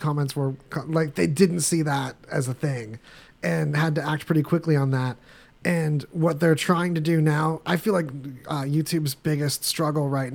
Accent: American